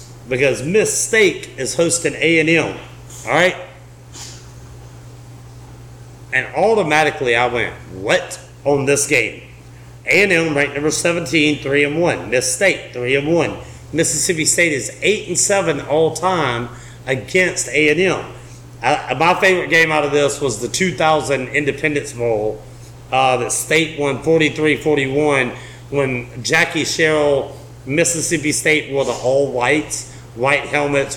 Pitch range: 125-160 Hz